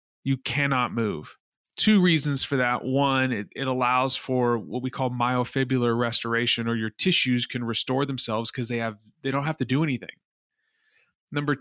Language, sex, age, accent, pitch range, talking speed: English, male, 30-49, American, 120-145 Hz, 170 wpm